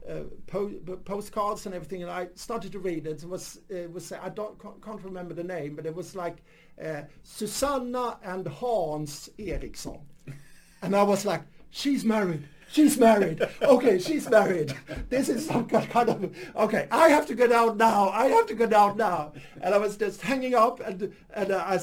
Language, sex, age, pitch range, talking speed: English, male, 60-79, 175-220 Hz, 180 wpm